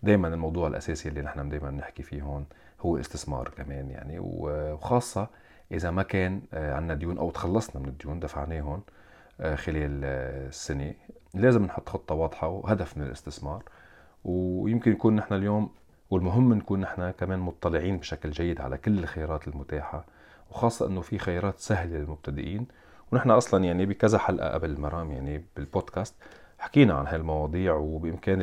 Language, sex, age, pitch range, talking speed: Arabic, male, 40-59, 75-95 Hz, 140 wpm